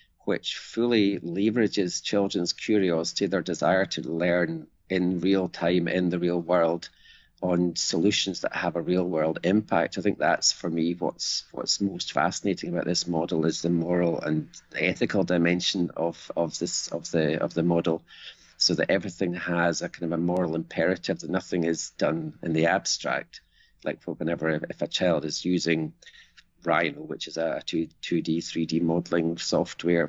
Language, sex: English, male